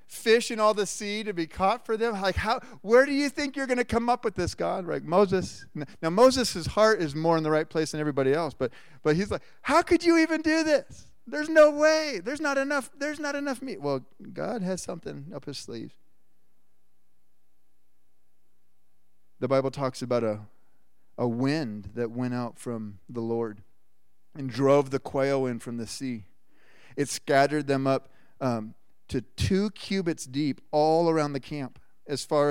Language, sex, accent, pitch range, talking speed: English, male, American, 110-155 Hz, 185 wpm